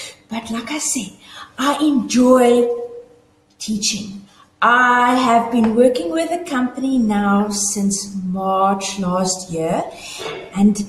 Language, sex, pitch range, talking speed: English, female, 200-275 Hz, 110 wpm